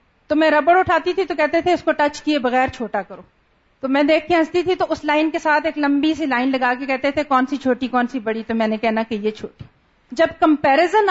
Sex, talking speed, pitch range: female, 260 wpm, 245-335 Hz